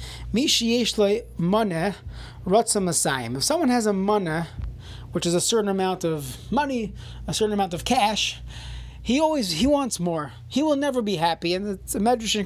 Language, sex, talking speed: English, male, 140 wpm